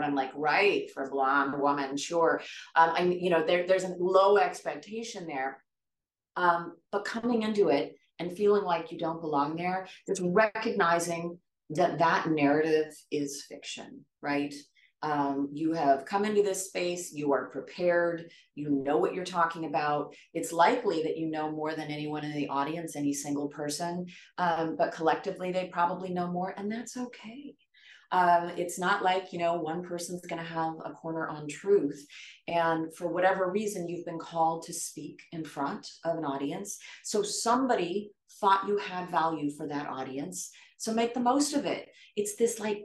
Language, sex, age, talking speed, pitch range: English, female, 30-49, 175 wpm, 155-200 Hz